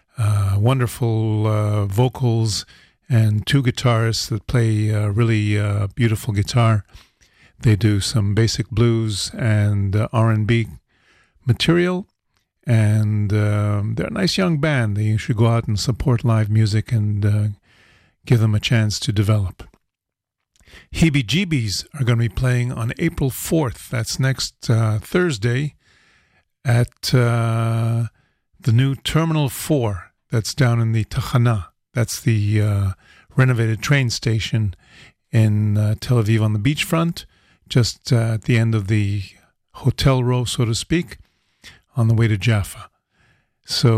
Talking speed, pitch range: 140 wpm, 105-125 Hz